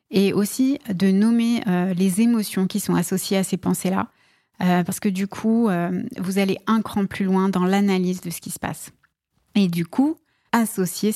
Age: 30-49